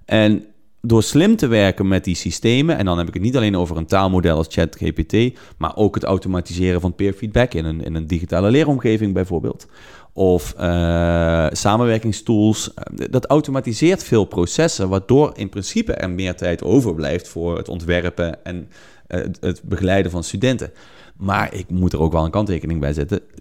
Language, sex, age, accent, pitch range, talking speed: Dutch, male, 30-49, Dutch, 85-110 Hz, 170 wpm